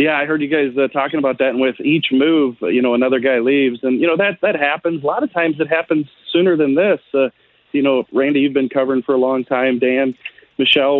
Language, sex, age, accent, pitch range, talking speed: English, male, 40-59, American, 130-165 Hz, 250 wpm